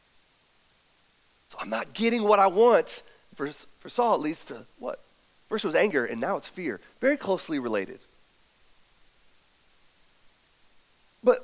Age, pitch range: 30-49, 195-245 Hz